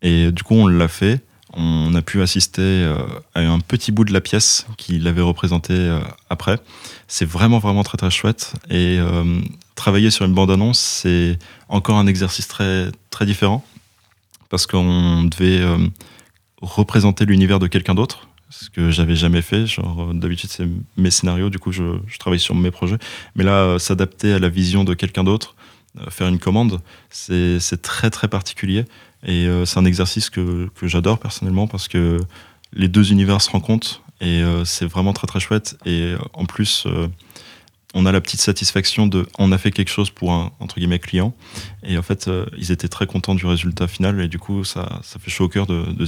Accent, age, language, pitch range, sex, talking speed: French, 20-39, French, 90-105 Hz, male, 190 wpm